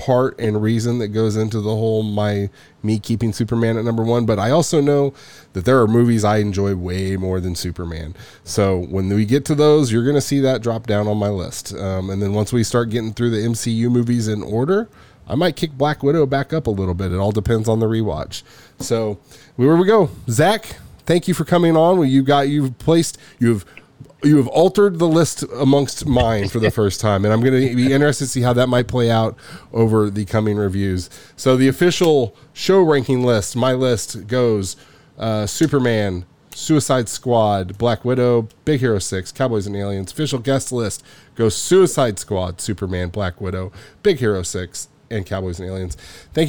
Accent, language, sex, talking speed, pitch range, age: American, English, male, 205 wpm, 105-140 Hz, 20-39